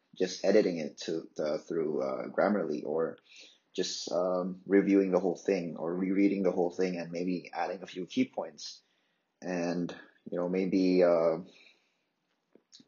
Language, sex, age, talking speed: English, male, 30-49, 150 wpm